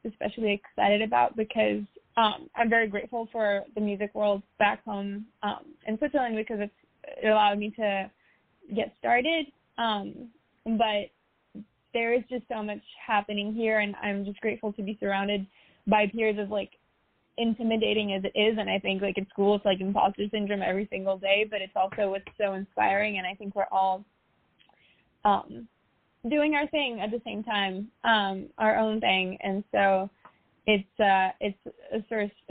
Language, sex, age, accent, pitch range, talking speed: English, female, 20-39, American, 195-225 Hz, 170 wpm